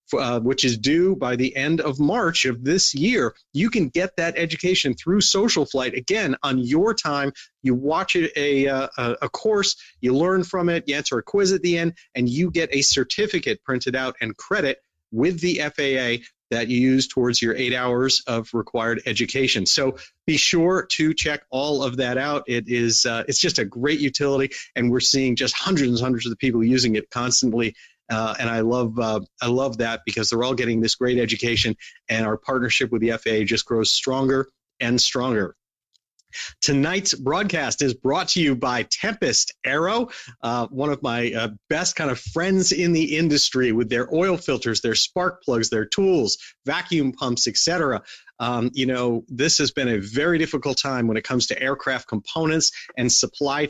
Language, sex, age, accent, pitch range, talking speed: English, male, 40-59, American, 120-150 Hz, 190 wpm